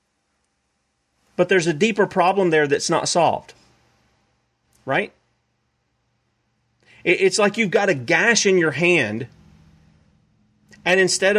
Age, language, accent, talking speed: 40-59, English, American, 110 wpm